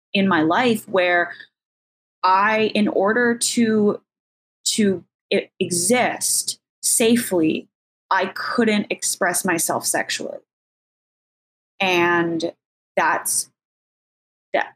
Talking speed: 75 wpm